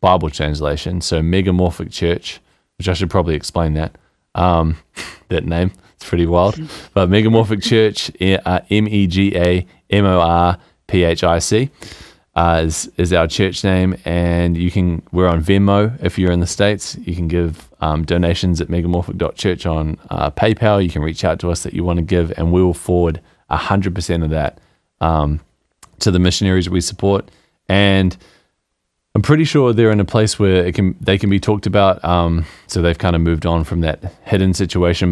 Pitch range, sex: 80-95 Hz, male